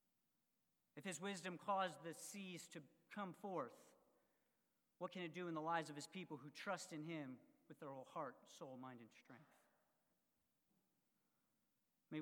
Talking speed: 155 wpm